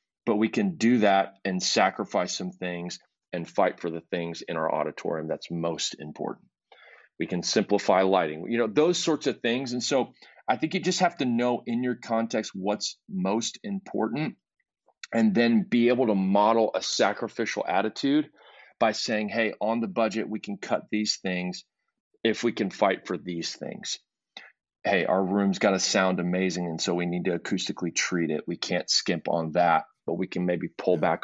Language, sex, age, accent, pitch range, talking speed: English, male, 30-49, American, 90-115 Hz, 190 wpm